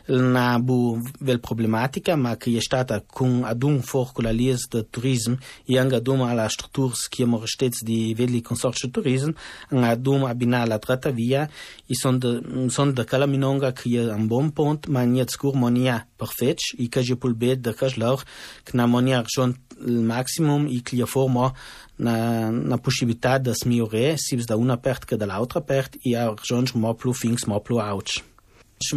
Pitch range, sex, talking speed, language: 120-135 Hz, male, 120 wpm, Italian